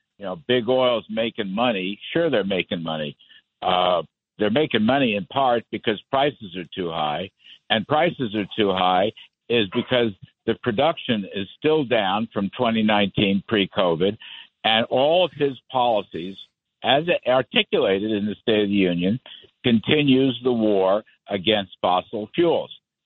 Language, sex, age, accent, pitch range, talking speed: English, male, 60-79, American, 100-140 Hz, 145 wpm